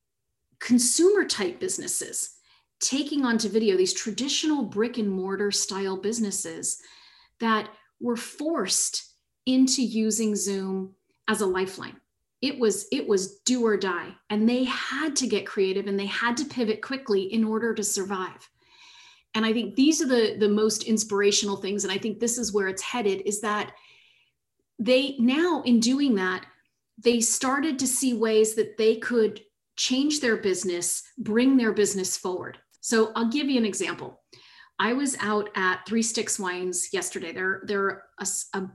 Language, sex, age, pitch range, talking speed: English, female, 30-49, 200-260 Hz, 160 wpm